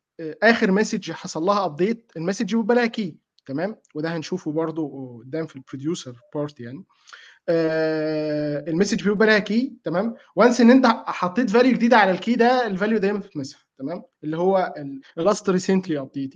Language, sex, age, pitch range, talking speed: Arabic, male, 20-39, 160-220 Hz, 140 wpm